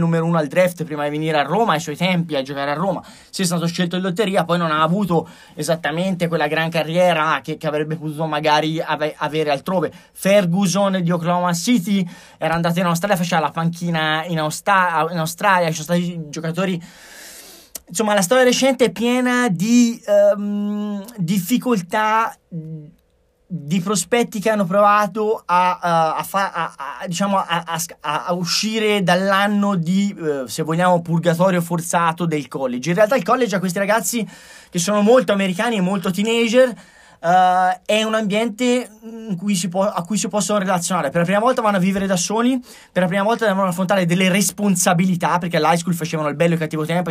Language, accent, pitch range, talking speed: Italian, native, 160-205 Hz, 185 wpm